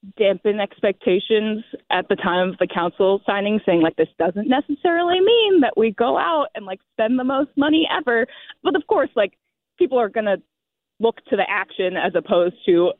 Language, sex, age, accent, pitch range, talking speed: English, female, 20-39, American, 180-245 Hz, 190 wpm